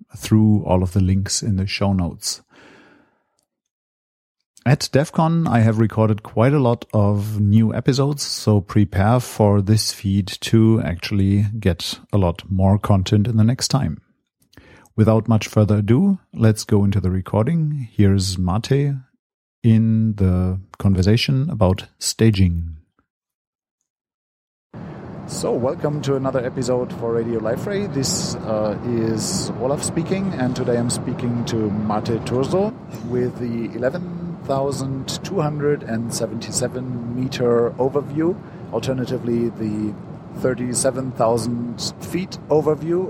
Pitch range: 105-135 Hz